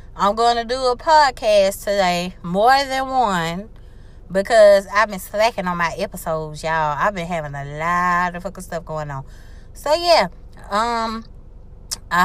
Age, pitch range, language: 20-39, 190-265 Hz, English